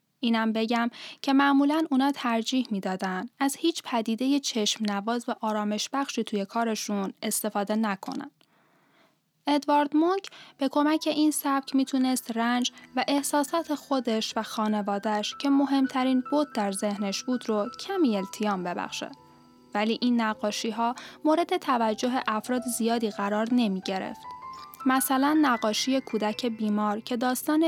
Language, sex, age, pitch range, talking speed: Persian, female, 10-29, 210-270 Hz, 130 wpm